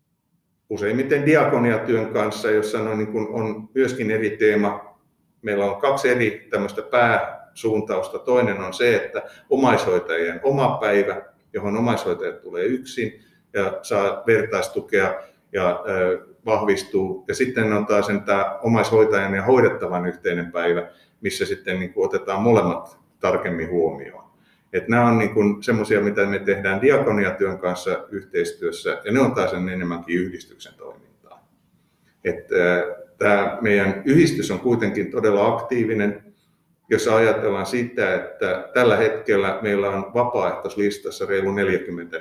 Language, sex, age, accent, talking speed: Finnish, male, 50-69, native, 110 wpm